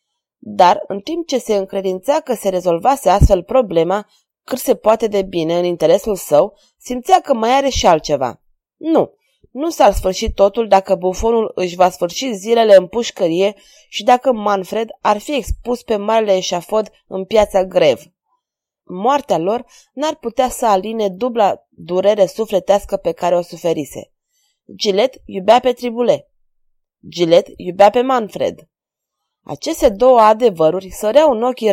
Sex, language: female, Romanian